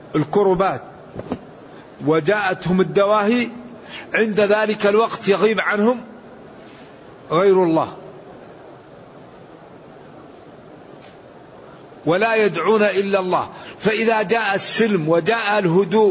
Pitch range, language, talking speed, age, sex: 190-225 Hz, English, 65 wpm, 50-69, male